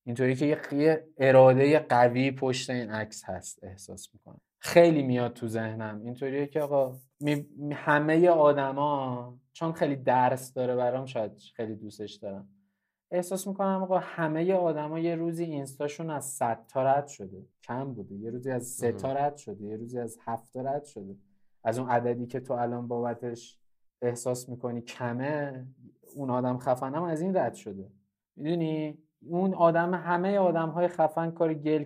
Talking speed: 160 wpm